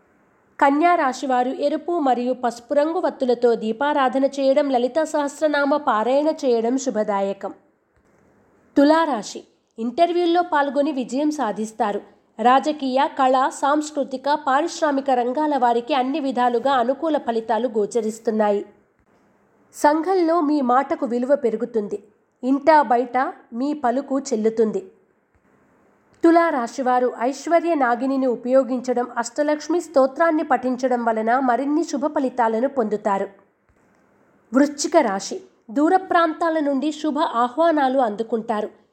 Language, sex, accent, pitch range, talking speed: Telugu, female, native, 240-295 Hz, 90 wpm